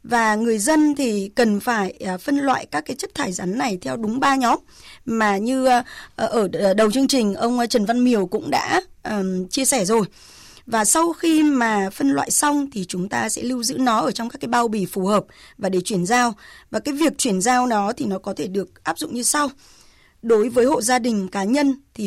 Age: 20-39